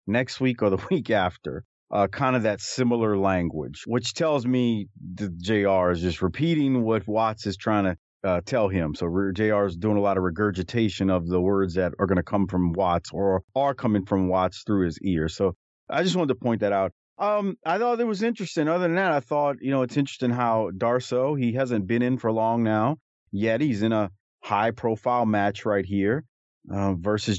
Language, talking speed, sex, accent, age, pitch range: English, 210 wpm, male, American, 40-59, 100-125 Hz